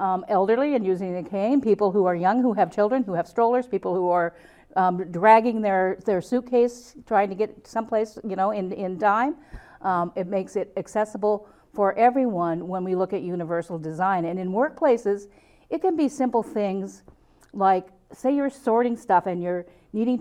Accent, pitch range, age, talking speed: American, 180-235 Hz, 50-69, 185 wpm